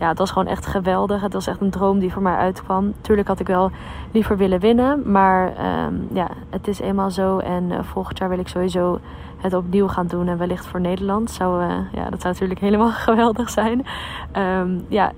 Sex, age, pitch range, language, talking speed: female, 20-39, 180-205 Hz, Dutch, 195 wpm